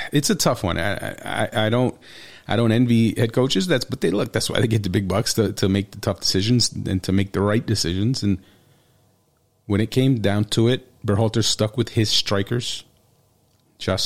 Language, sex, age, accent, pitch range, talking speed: English, male, 30-49, American, 100-125 Hz, 210 wpm